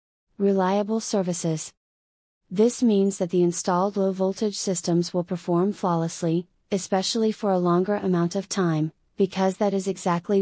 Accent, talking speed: American, 130 wpm